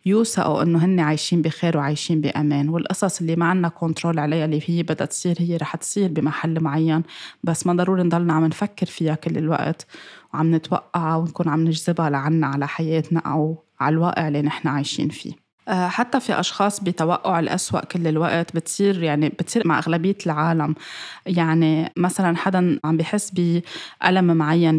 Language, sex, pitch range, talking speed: Arabic, female, 155-180 Hz, 160 wpm